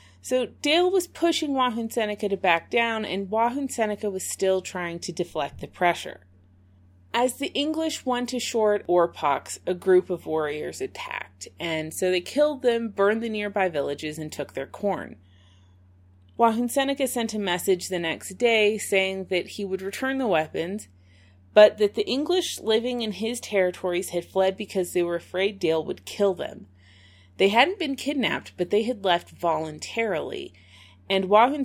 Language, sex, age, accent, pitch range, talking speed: English, female, 30-49, American, 155-225 Hz, 170 wpm